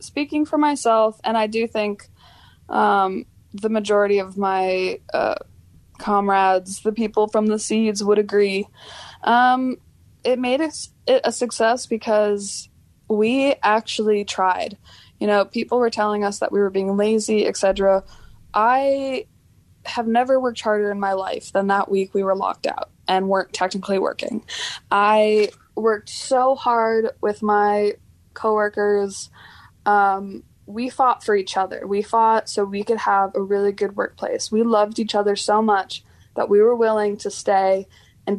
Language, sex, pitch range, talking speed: English, female, 200-225 Hz, 155 wpm